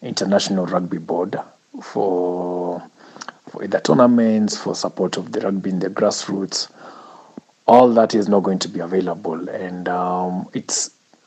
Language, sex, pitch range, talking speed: English, male, 90-100 Hz, 140 wpm